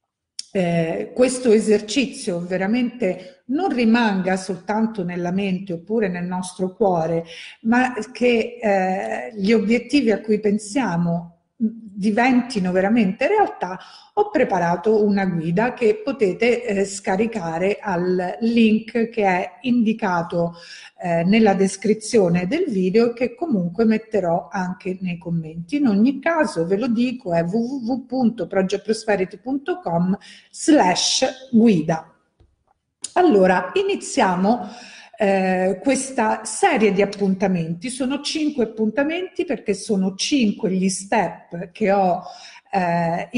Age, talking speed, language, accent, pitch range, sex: 50-69, 100 wpm, Italian, native, 185-235 Hz, female